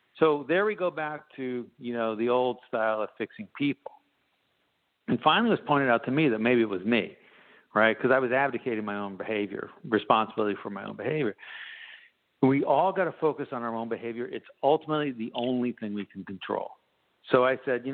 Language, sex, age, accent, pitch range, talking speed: English, male, 60-79, American, 115-155 Hz, 205 wpm